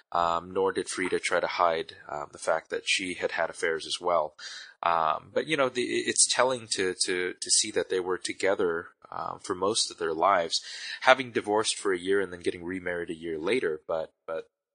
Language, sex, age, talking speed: English, male, 20-39, 210 wpm